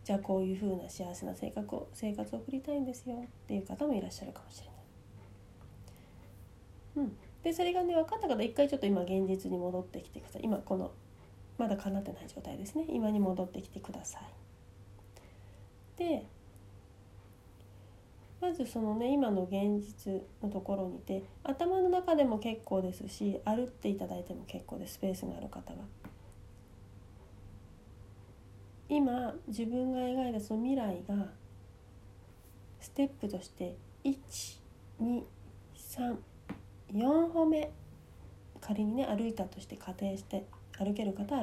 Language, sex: Japanese, female